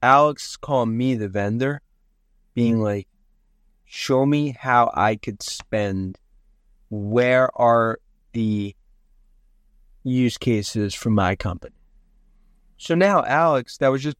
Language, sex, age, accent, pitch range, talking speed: English, male, 30-49, American, 110-135 Hz, 115 wpm